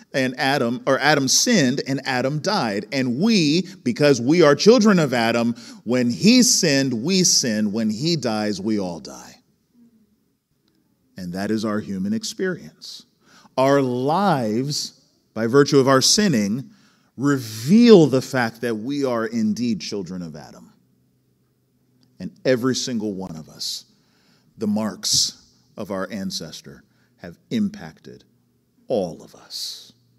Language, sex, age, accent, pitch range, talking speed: English, male, 40-59, American, 120-195 Hz, 130 wpm